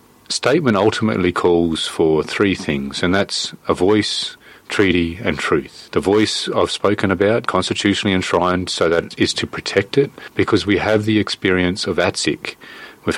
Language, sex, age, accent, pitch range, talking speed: English, male, 40-59, Australian, 85-105 Hz, 155 wpm